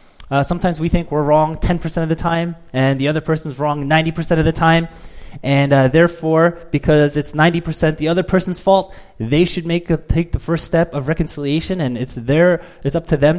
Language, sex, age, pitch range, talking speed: English, male, 20-39, 115-155 Hz, 205 wpm